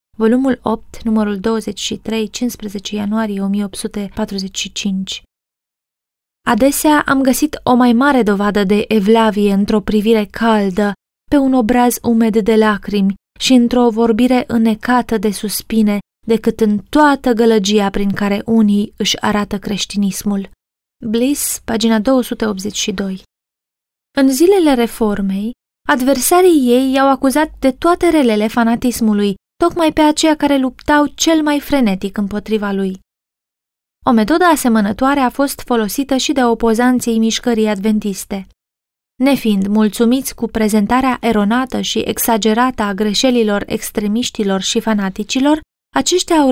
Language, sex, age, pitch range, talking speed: Romanian, female, 20-39, 215-265 Hz, 115 wpm